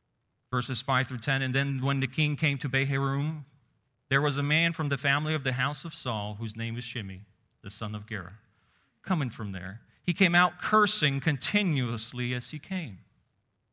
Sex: male